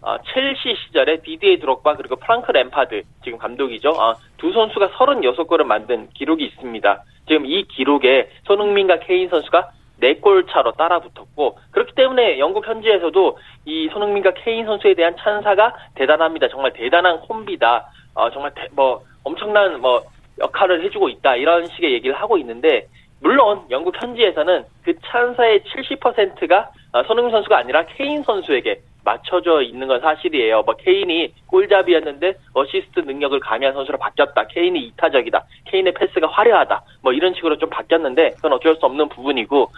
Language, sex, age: Korean, male, 20-39